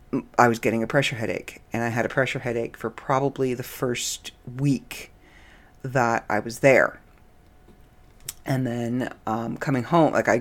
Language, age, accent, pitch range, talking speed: English, 40-59, American, 120-135 Hz, 160 wpm